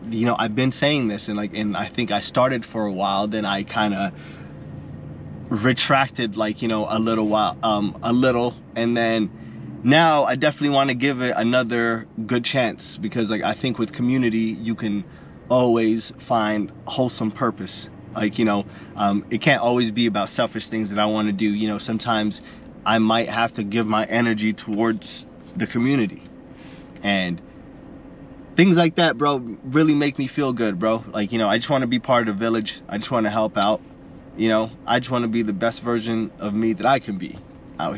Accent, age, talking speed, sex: American, 20-39, 205 wpm, male